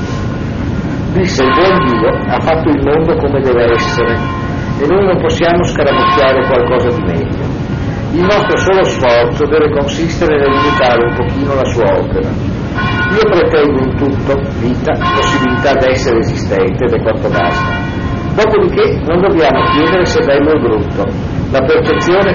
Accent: native